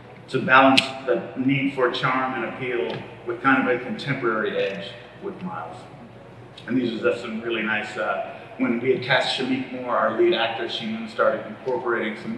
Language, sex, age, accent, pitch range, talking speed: Italian, male, 30-49, American, 120-165 Hz, 180 wpm